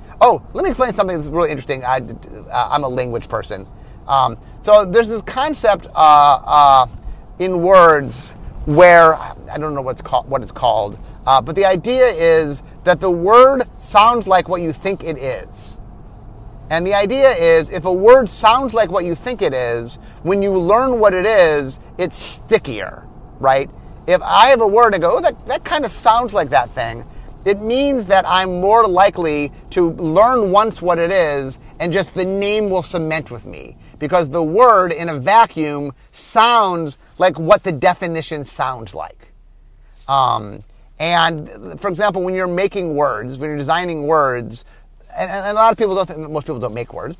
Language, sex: English, male